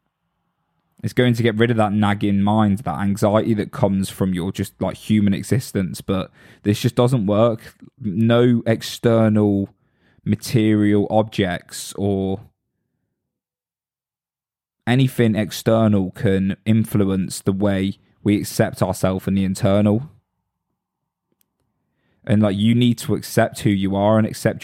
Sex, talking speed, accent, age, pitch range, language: male, 125 wpm, British, 20-39, 100-115 Hz, English